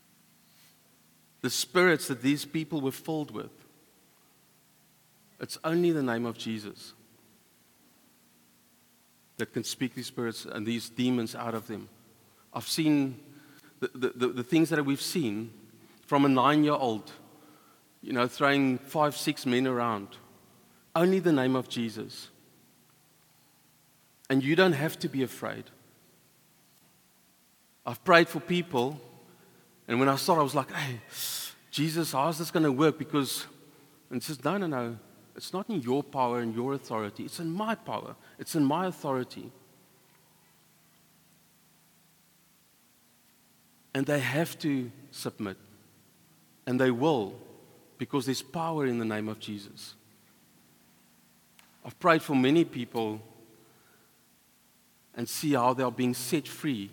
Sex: male